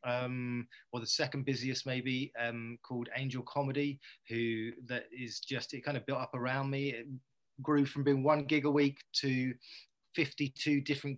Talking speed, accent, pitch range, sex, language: 170 wpm, British, 120-140 Hz, male, English